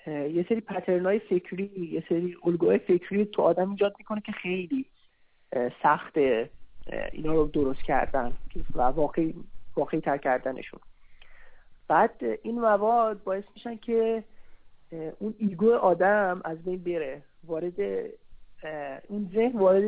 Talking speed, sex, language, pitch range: 125 wpm, male, Persian, 160-210 Hz